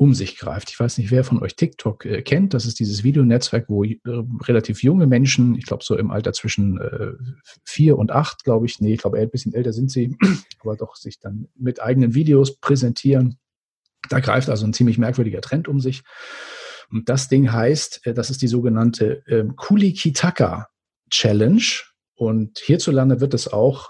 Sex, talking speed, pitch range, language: male, 190 wpm, 115-145 Hz, German